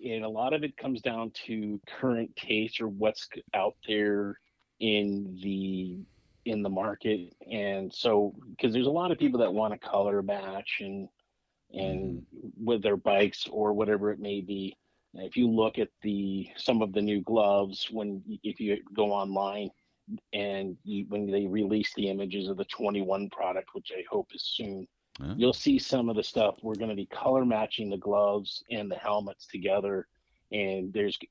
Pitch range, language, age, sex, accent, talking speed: 100-115 Hz, English, 40-59, male, American, 180 wpm